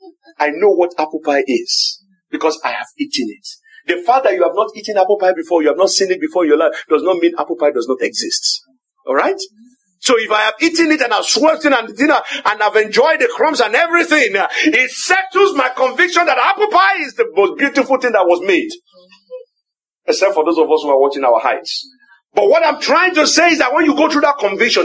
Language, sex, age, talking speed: English, male, 50-69, 235 wpm